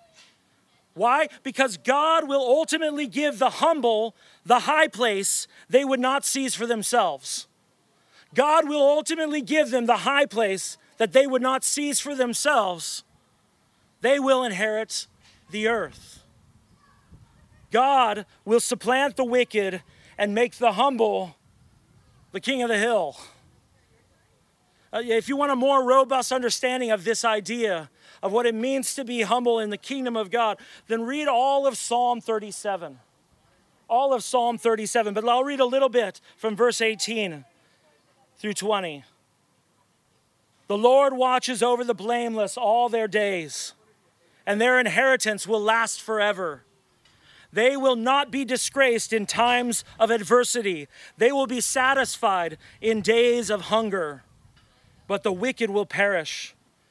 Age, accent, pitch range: 40-59, American, 210-265 Hz